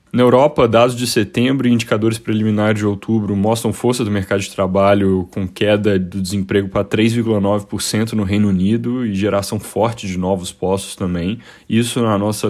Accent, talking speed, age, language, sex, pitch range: Brazilian, 170 wpm, 10-29, Portuguese, male, 95-110 Hz